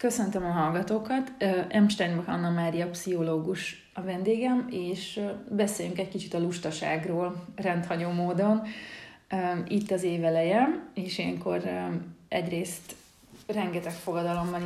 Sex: female